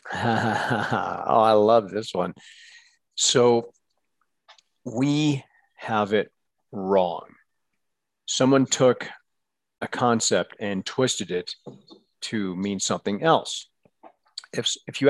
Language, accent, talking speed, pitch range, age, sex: English, American, 95 wpm, 105-135 Hz, 50-69, male